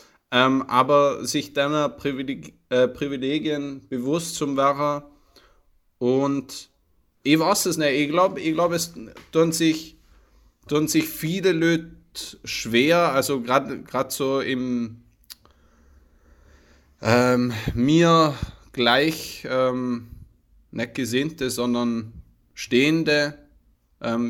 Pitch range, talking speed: 115-150 Hz, 100 wpm